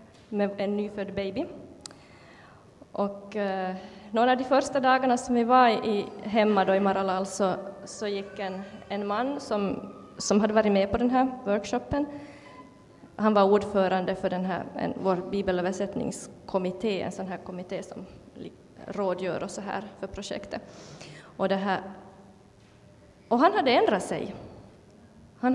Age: 20-39